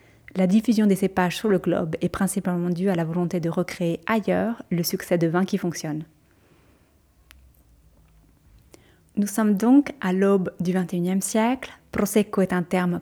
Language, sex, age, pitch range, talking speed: French, female, 30-49, 175-210 Hz, 155 wpm